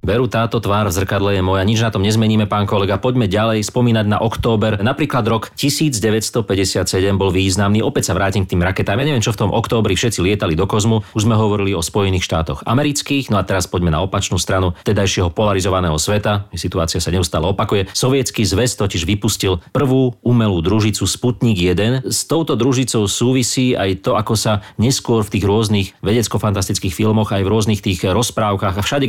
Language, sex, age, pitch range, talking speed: Slovak, male, 40-59, 95-120 Hz, 185 wpm